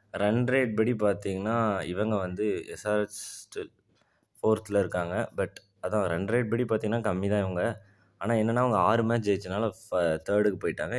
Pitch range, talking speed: 100-110 Hz, 155 wpm